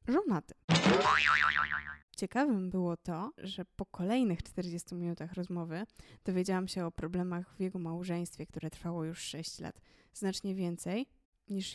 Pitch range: 175-210 Hz